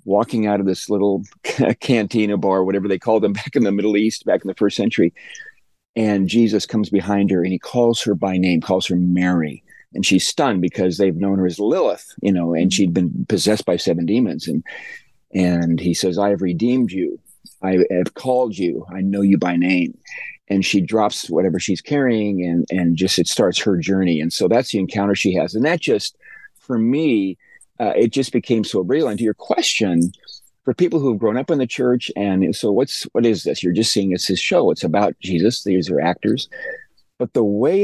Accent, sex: American, male